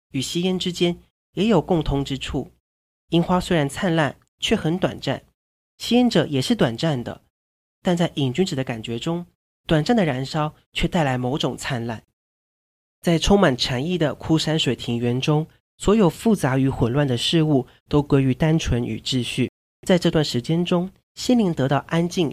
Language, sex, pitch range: Chinese, male, 125-170 Hz